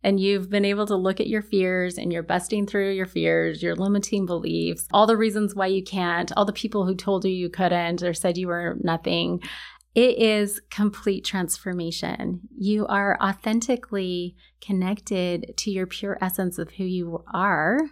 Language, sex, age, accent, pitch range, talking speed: English, female, 30-49, American, 185-220 Hz, 180 wpm